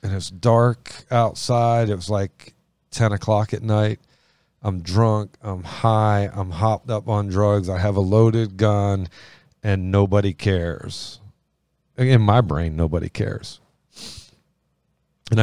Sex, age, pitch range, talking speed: male, 40-59, 95-120 Hz, 130 wpm